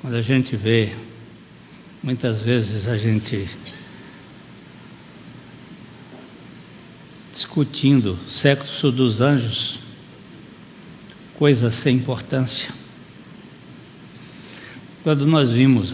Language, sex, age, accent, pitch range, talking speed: Portuguese, male, 60-79, Brazilian, 115-140 Hz, 70 wpm